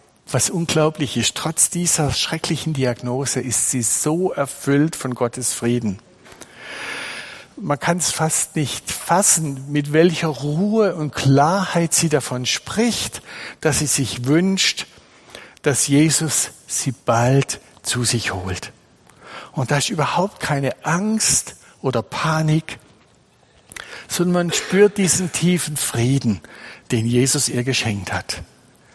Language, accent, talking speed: German, German, 120 wpm